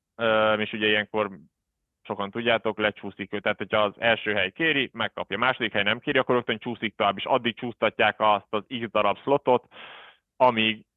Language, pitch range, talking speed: Hungarian, 105-120 Hz, 180 wpm